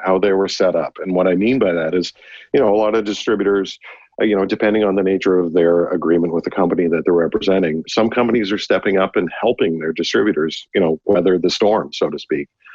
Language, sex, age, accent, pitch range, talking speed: English, male, 50-69, American, 85-105 Hz, 240 wpm